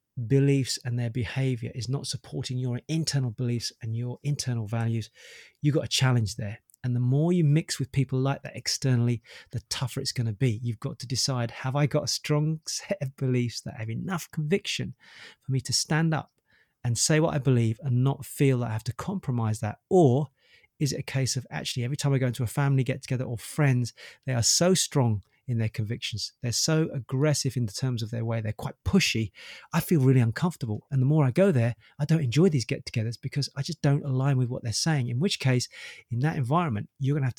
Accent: British